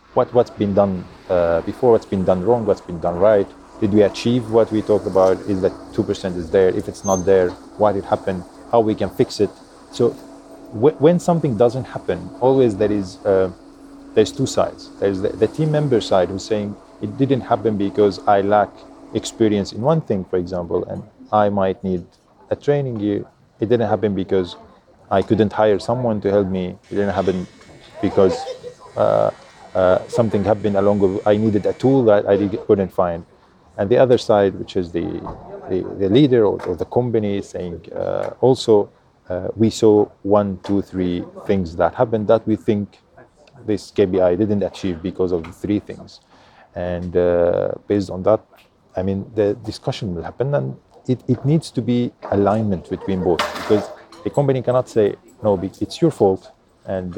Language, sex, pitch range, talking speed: English, male, 95-120 Hz, 185 wpm